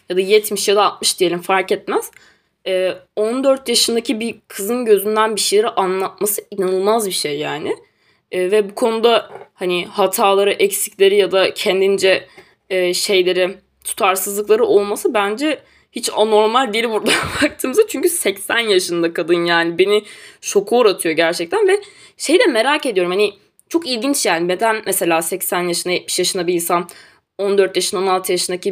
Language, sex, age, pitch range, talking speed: Turkish, female, 20-39, 180-235 Hz, 140 wpm